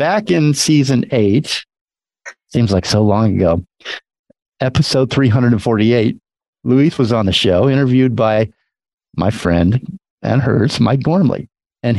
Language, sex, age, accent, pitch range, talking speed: English, male, 50-69, American, 105-135 Hz, 125 wpm